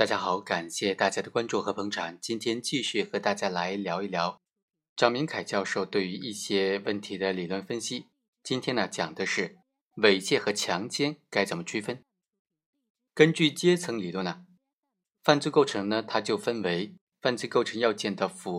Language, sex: Chinese, male